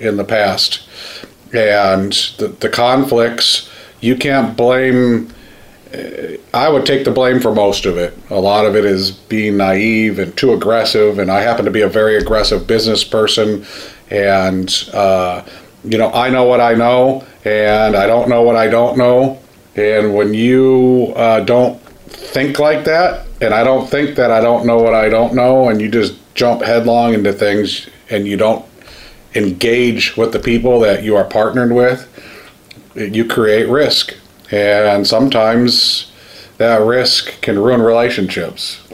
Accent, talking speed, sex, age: American, 160 wpm, male, 40-59